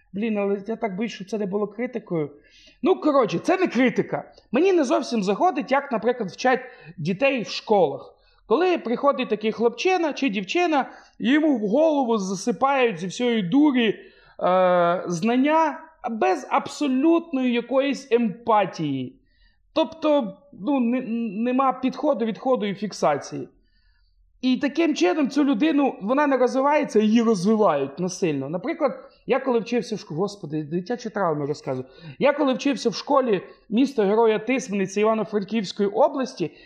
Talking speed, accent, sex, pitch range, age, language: 135 wpm, native, male, 185-280 Hz, 30-49, Ukrainian